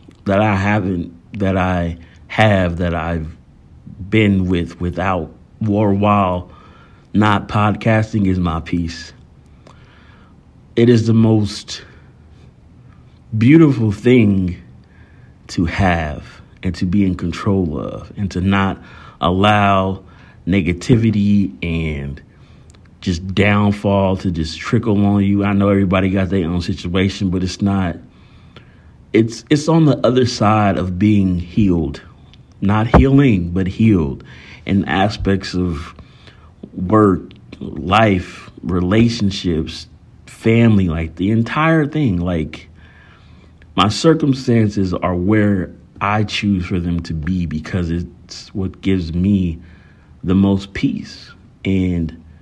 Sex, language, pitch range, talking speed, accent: male, English, 85-105 Hz, 115 wpm, American